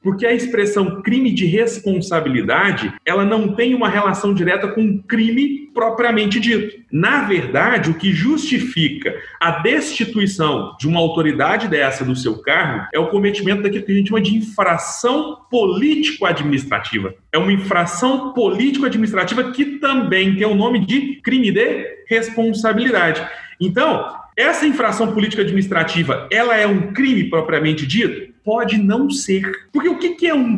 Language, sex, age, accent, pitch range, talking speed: Portuguese, male, 40-59, Brazilian, 165-235 Hz, 145 wpm